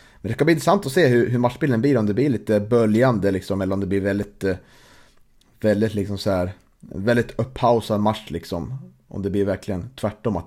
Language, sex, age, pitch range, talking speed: Swedish, male, 30-49, 100-120 Hz, 200 wpm